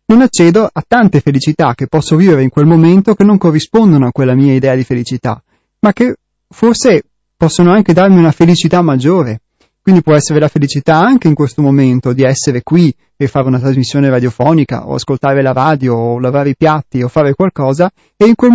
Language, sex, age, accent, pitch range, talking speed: Italian, male, 30-49, native, 135-170 Hz, 195 wpm